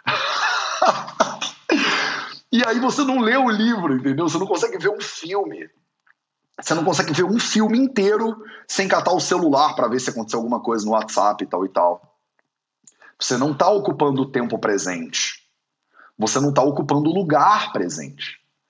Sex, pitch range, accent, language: male, 140-230 Hz, Brazilian, Portuguese